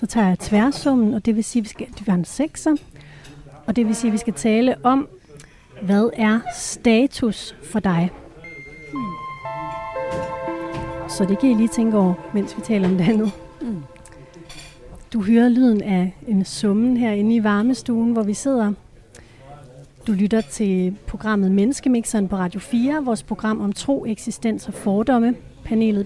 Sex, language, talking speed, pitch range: female, Danish, 150 wpm, 180-235 Hz